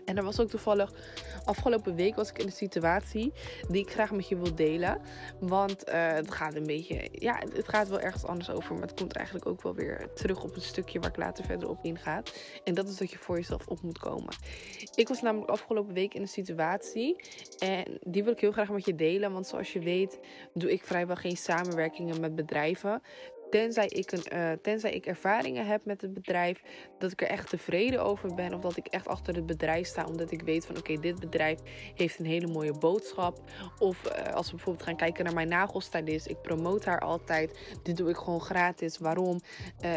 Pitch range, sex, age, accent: 165-195 Hz, female, 20-39, Dutch